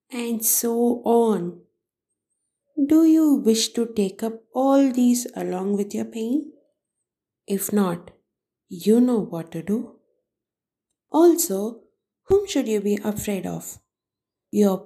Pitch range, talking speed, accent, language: 185-235 Hz, 120 wpm, Indian, English